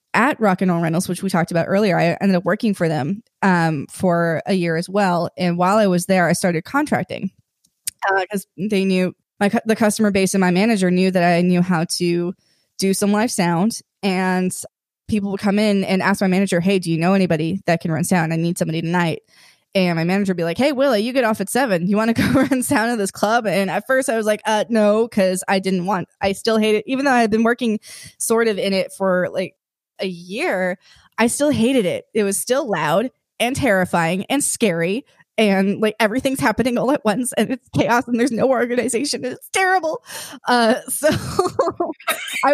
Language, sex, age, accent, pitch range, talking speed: English, female, 20-39, American, 180-230 Hz, 220 wpm